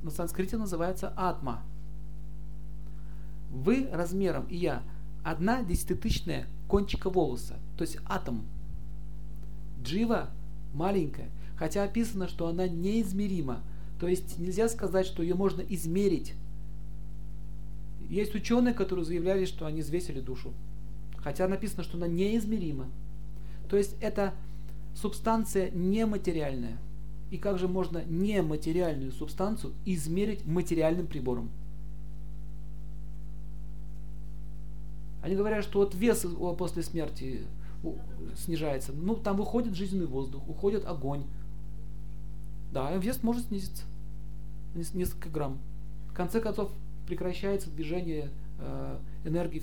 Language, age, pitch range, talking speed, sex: Russian, 40-59, 150-185 Hz, 105 wpm, male